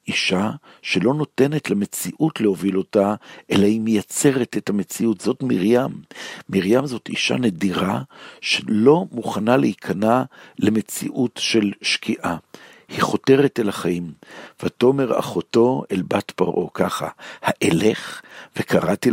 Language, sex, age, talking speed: Hebrew, male, 60-79, 110 wpm